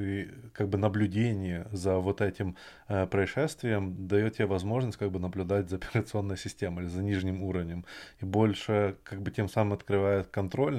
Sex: male